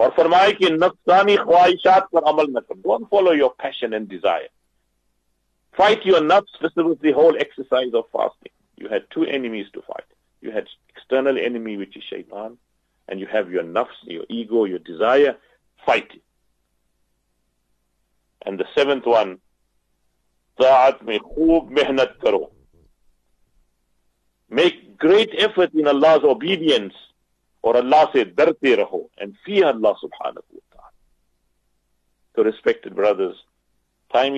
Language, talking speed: English, 110 wpm